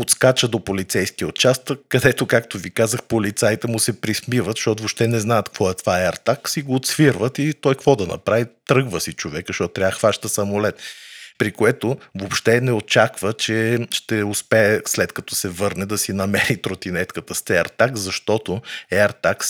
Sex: male